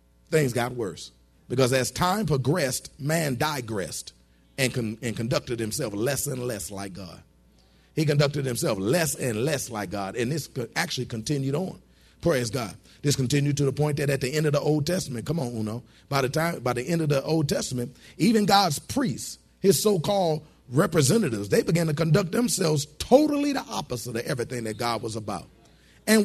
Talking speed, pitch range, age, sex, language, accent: 185 wpm, 115-165 Hz, 40-59, male, English, American